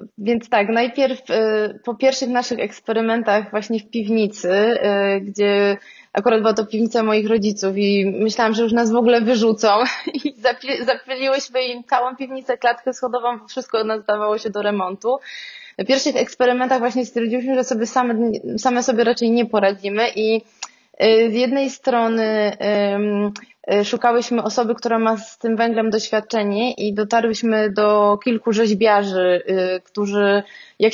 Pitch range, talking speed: 210-245 Hz, 140 wpm